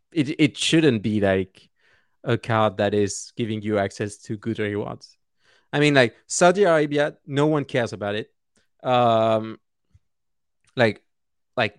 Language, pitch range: English, 105-130 Hz